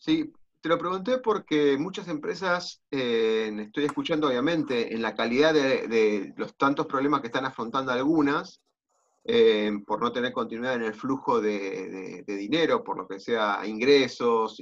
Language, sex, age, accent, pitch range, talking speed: Spanish, male, 30-49, Argentinian, 130-215 Hz, 165 wpm